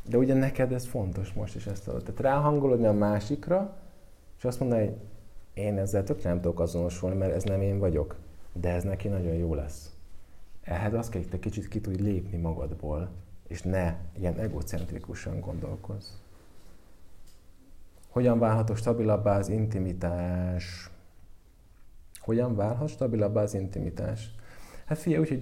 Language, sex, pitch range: Hungarian, male, 90-125 Hz